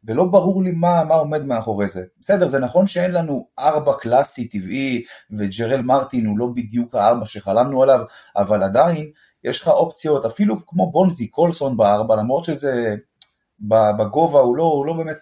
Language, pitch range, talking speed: Hebrew, 115-175 Hz, 165 wpm